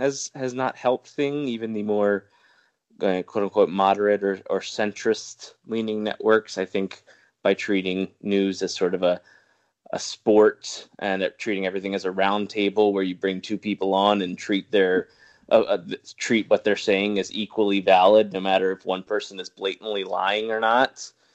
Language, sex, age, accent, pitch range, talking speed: English, male, 20-39, American, 95-115 Hz, 175 wpm